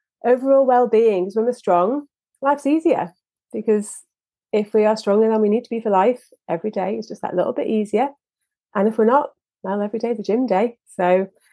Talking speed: 205 wpm